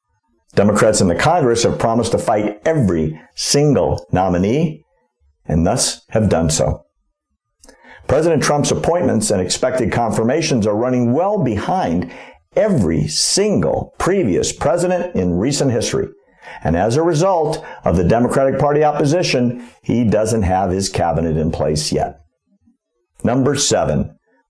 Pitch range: 100-170 Hz